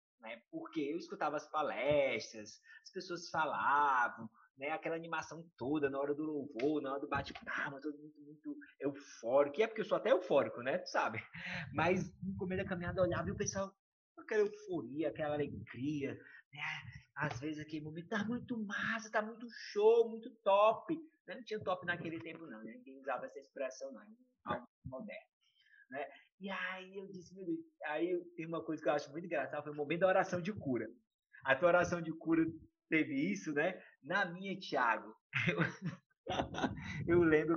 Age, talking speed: 20-39, 175 wpm